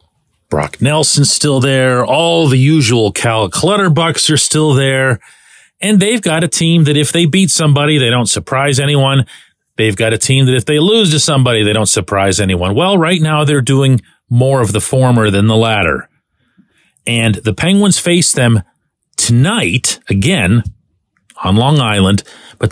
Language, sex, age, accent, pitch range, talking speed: English, male, 40-59, American, 100-150 Hz, 165 wpm